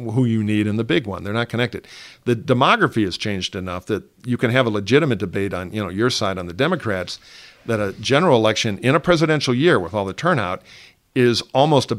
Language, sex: English, male